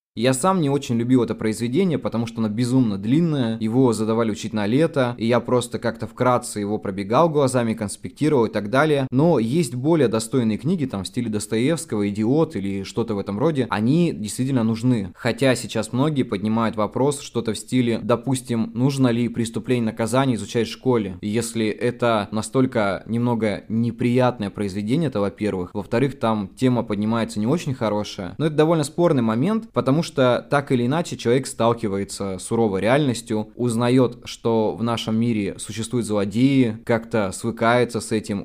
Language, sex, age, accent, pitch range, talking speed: Russian, male, 20-39, native, 110-130 Hz, 160 wpm